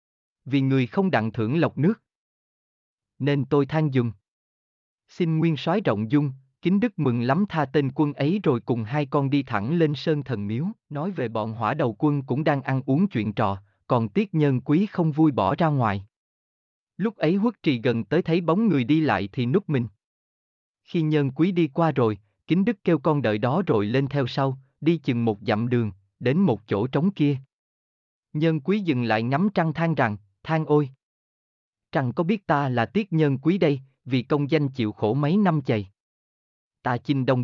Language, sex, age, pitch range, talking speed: Vietnamese, male, 20-39, 110-155 Hz, 200 wpm